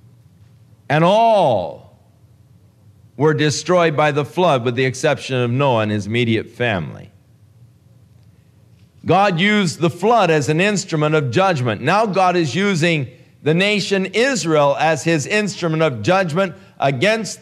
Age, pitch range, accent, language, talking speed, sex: 50-69, 110-160 Hz, American, English, 130 wpm, male